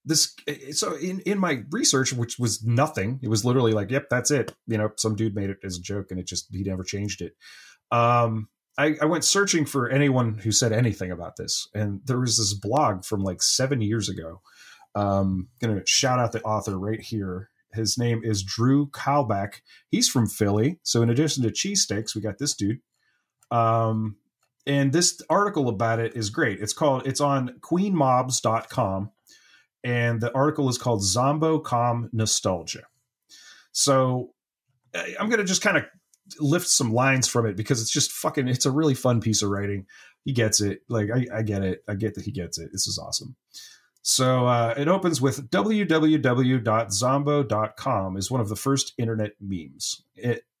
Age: 30-49